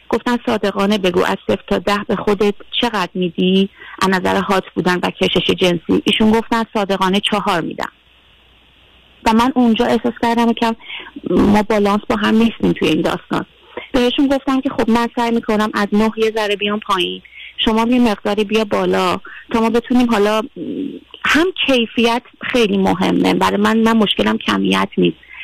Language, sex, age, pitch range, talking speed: Persian, female, 30-49, 190-230 Hz, 165 wpm